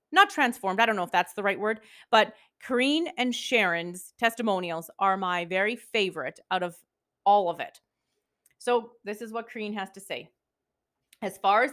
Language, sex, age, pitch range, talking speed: English, female, 30-49, 200-255 Hz, 180 wpm